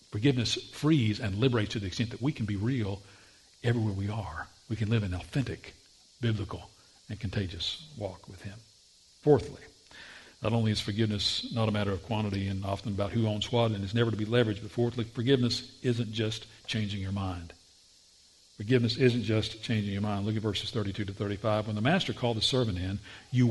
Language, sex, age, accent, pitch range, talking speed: English, male, 50-69, American, 100-125 Hz, 195 wpm